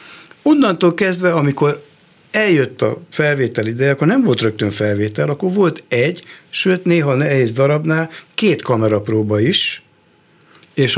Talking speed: 130 wpm